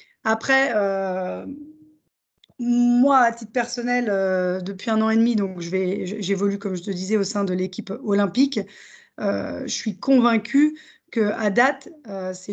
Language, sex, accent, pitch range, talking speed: French, female, French, 205-250 Hz, 165 wpm